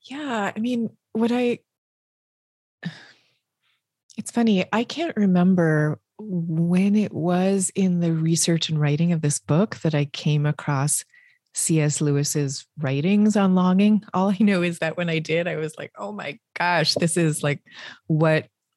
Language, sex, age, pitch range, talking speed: English, female, 30-49, 155-190 Hz, 155 wpm